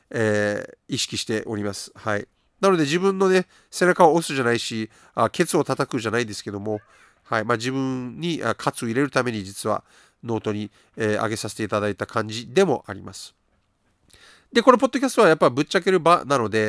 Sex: male